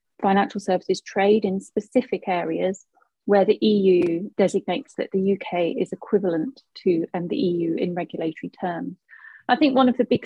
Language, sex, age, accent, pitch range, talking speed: English, female, 30-49, British, 185-235 Hz, 165 wpm